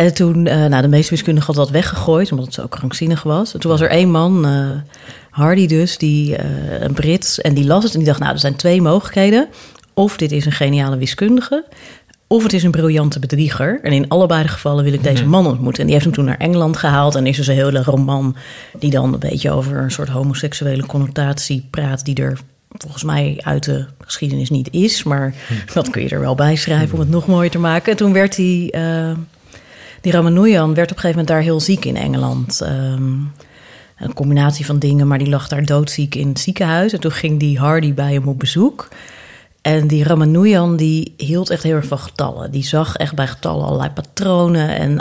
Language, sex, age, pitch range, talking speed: Dutch, female, 30-49, 140-170 Hz, 220 wpm